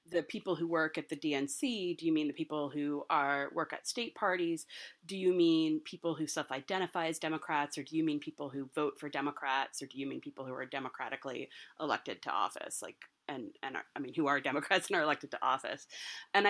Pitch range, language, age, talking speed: 140-175 Hz, English, 30-49, 220 wpm